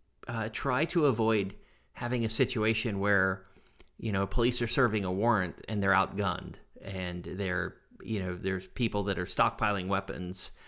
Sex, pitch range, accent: male, 95-125 Hz, American